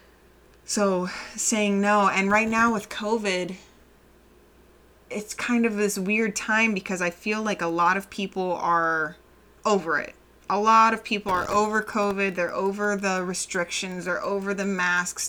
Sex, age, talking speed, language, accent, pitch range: female, 20-39, 155 wpm, English, American, 180-215 Hz